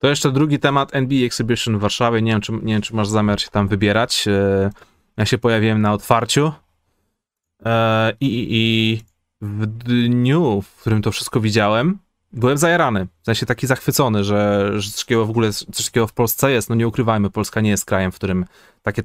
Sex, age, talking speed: male, 20-39, 190 wpm